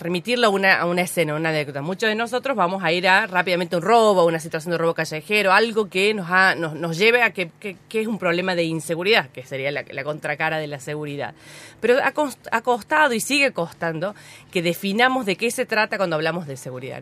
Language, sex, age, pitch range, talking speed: Spanish, female, 30-49, 155-210 Hz, 220 wpm